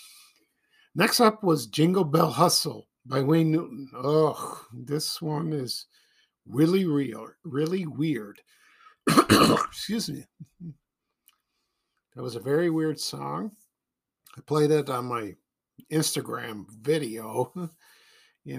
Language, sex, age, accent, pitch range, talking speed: English, male, 50-69, American, 140-215 Hz, 105 wpm